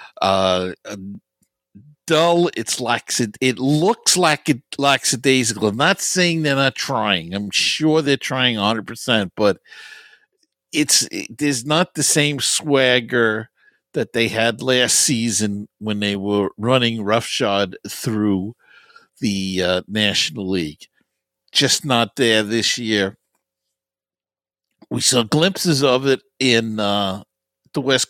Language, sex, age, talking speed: English, male, 60-79, 125 wpm